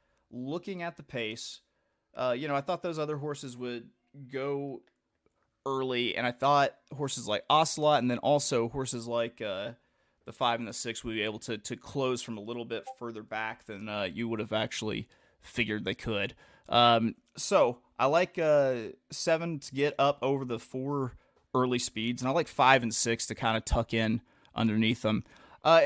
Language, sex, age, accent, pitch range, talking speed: English, male, 30-49, American, 115-145 Hz, 190 wpm